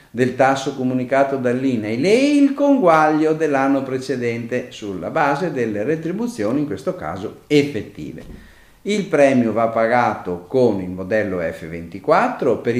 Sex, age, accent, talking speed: male, 50-69, native, 120 wpm